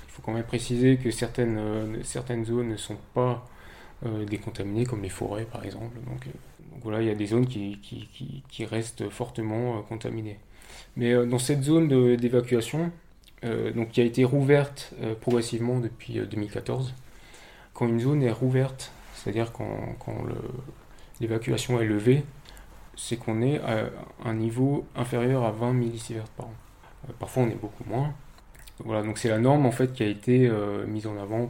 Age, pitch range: 20-39, 110-125 Hz